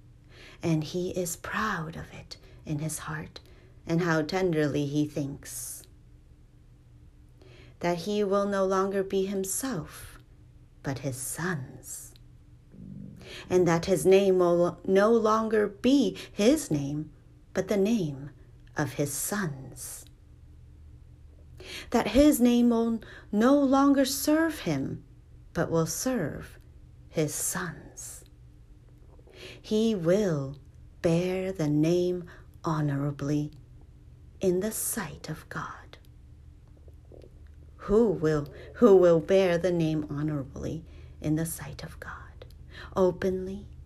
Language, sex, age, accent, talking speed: English, female, 40-59, American, 105 wpm